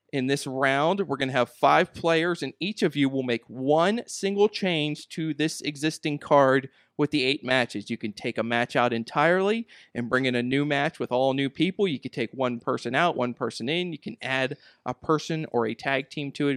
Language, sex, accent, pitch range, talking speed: English, male, American, 120-155 Hz, 230 wpm